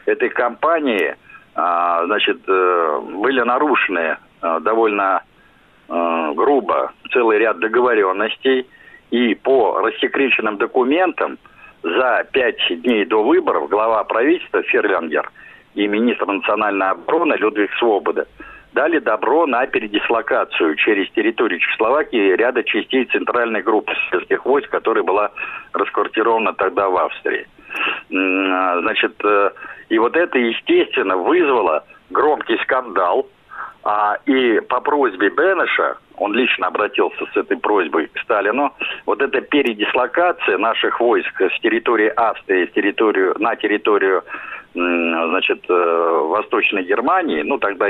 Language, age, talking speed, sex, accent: Russian, 50-69, 110 wpm, male, native